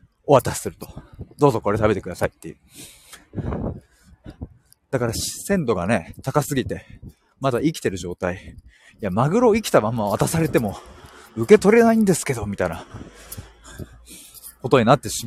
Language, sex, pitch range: Japanese, male, 100-150 Hz